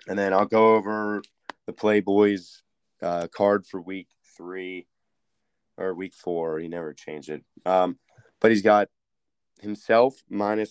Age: 20-39